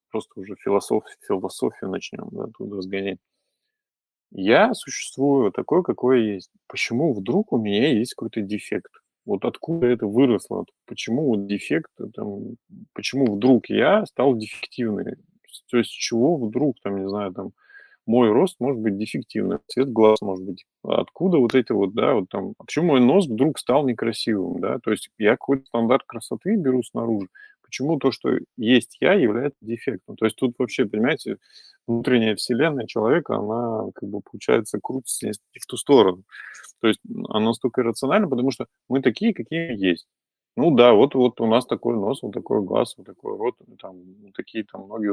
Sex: male